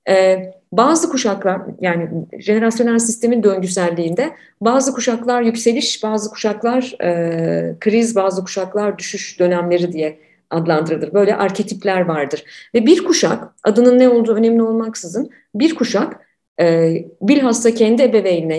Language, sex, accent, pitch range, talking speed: Turkish, female, native, 175-240 Hz, 110 wpm